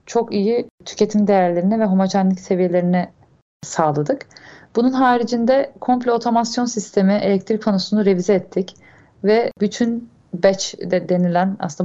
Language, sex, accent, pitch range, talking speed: Turkish, female, native, 190-225 Hz, 115 wpm